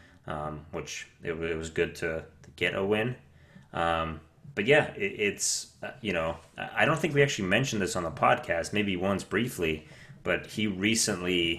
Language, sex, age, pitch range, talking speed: English, male, 30-49, 80-95 Hz, 175 wpm